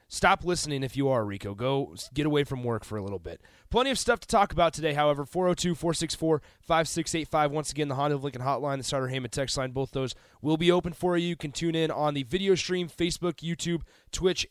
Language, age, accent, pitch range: English, 30-49, American, 135-170 Hz